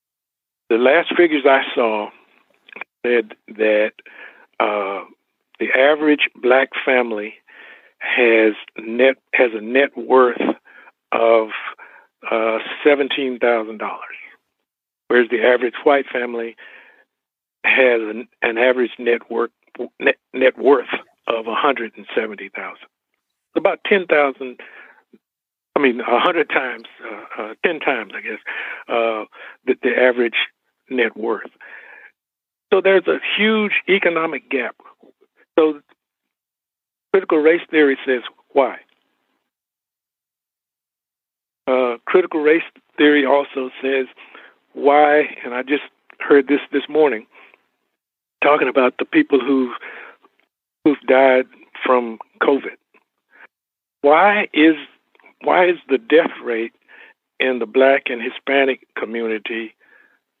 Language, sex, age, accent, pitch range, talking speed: English, male, 60-79, American, 120-150 Hz, 110 wpm